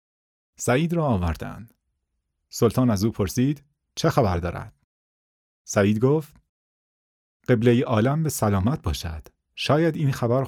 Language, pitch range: Persian, 90-135 Hz